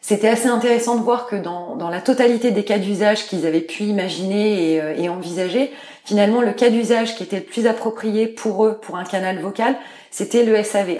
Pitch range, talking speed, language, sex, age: 185-235 Hz, 215 wpm, French, female, 20-39